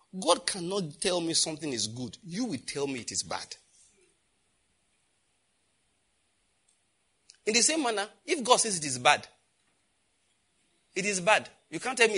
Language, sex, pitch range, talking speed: English, male, 145-235 Hz, 155 wpm